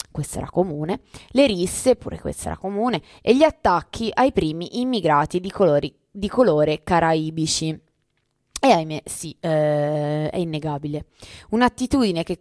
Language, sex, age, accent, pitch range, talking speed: Italian, female, 20-39, native, 155-200 Hz, 130 wpm